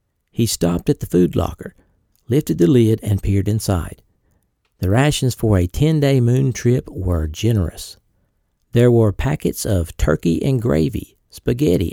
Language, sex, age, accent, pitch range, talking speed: English, male, 60-79, American, 90-125 Hz, 145 wpm